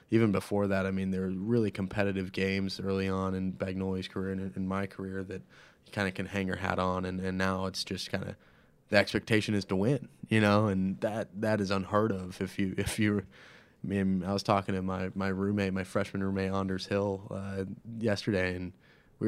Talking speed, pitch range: 220 wpm, 95-105 Hz